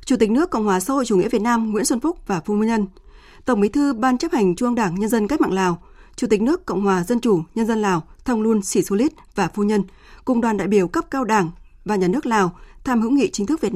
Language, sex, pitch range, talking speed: Vietnamese, female, 195-245 Hz, 280 wpm